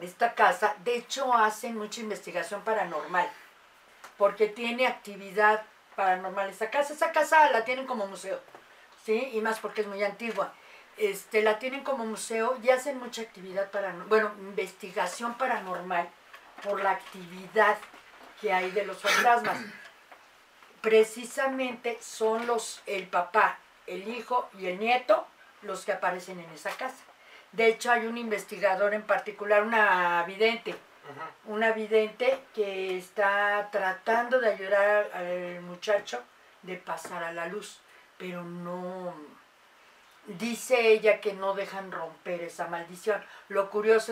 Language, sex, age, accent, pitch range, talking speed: Spanish, female, 40-59, Mexican, 190-225 Hz, 135 wpm